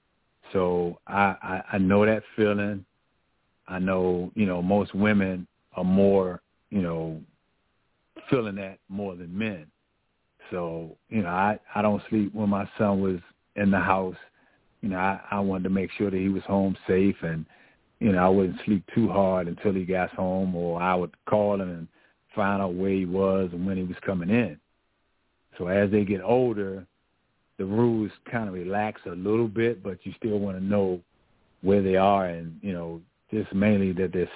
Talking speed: 185 wpm